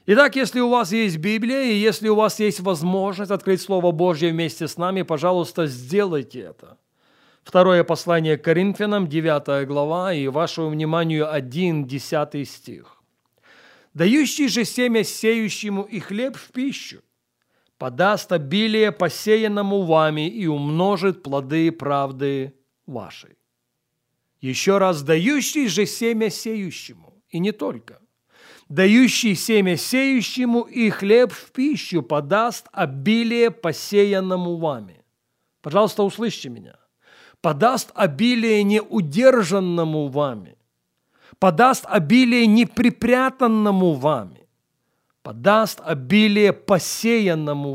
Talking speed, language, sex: 105 wpm, Russian, male